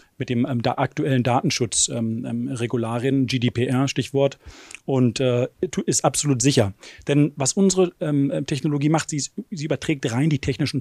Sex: male